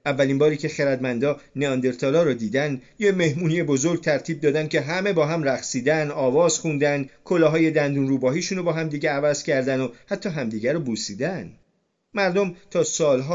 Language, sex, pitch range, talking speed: Persian, male, 120-165 Hz, 160 wpm